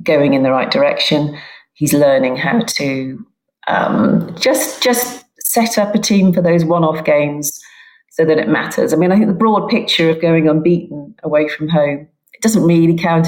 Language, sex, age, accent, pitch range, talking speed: English, female, 40-59, British, 155-200 Hz, 185 wpm